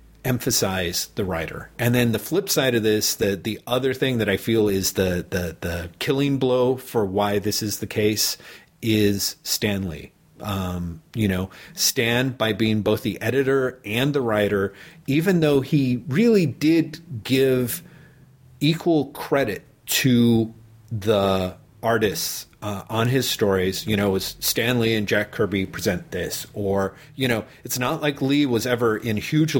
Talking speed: 155 wpm